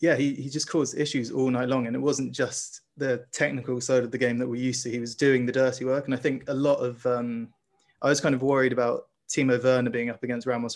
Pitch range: 120-130 Hz